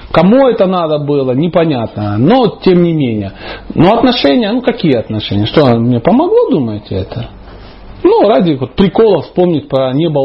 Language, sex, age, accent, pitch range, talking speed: Russian, male, 40-59, native, 125-195 Hz, 150 wpm